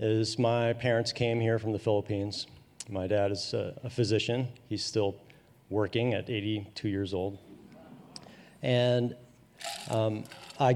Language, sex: English, male